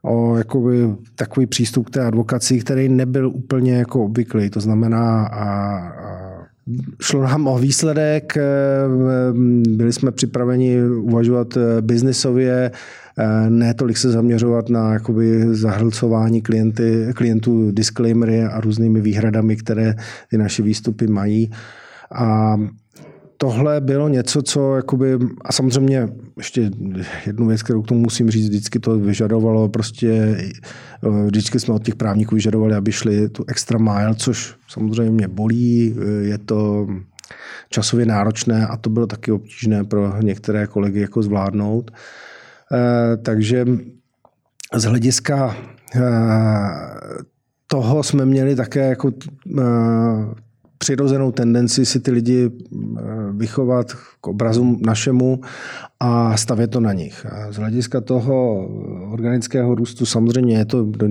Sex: male